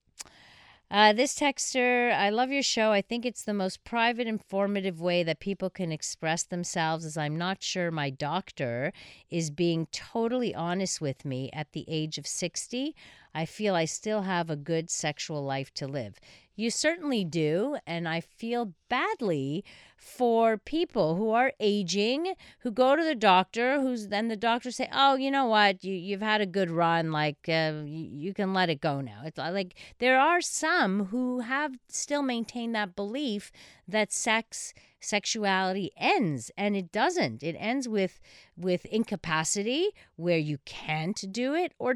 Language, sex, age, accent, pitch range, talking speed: English, female, 40-59, American, 160-240 Hz, 165 wpm